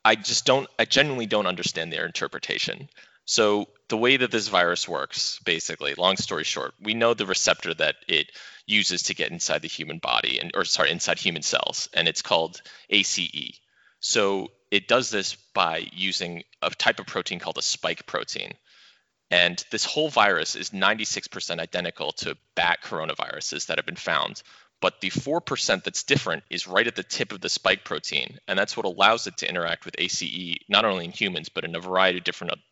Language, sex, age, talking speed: English, male, 30-49, 195 wpm